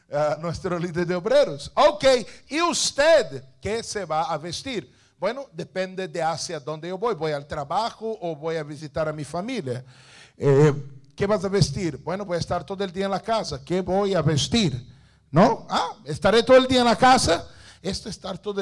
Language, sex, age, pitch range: English, male, 50-69, 145-195 Hz